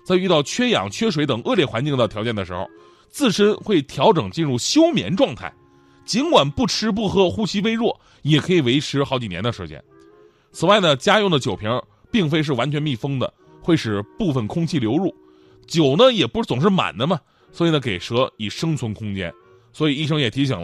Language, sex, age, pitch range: Chinese, male, 30-49, 125-190 Hz